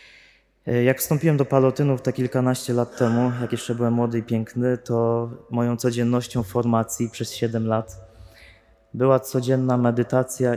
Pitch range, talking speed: 110-135 Hz, 135 wpm